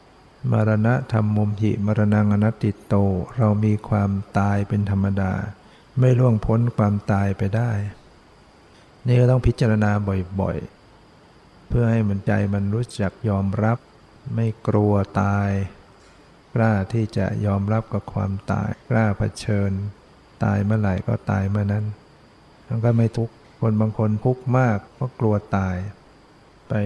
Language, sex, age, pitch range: Thai, male, 60-79, 100-115 Hz